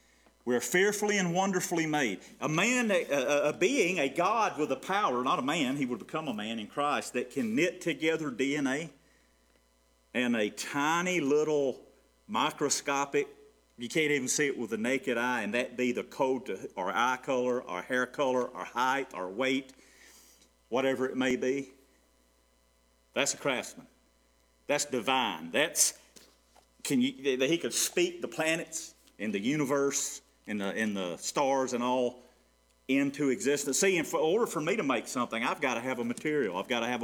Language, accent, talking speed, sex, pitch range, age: English, American, 180 wpm, male, 100-145 Hz, 40-59